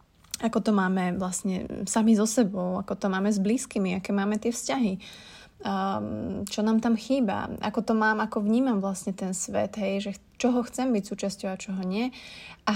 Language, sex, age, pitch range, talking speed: Slovak, female, 20-39, 190-220 Hz, 180 wpm